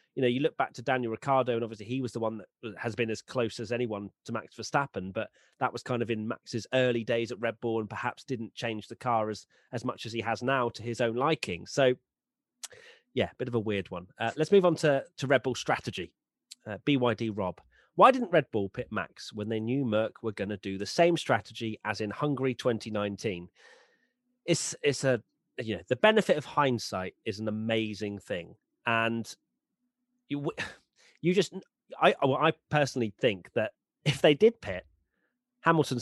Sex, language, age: male, English, 30-49